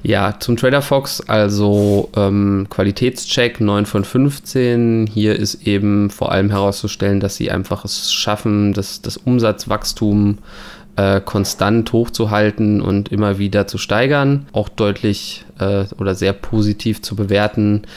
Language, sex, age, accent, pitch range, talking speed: German, male, 20-39, German, 100-110 Hz, 135 wpm